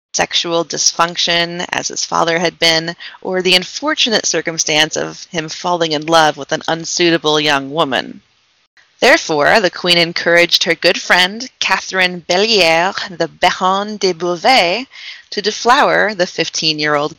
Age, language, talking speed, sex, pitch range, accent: 30-49, English, 135 wpm, female, 165-190 Hz, American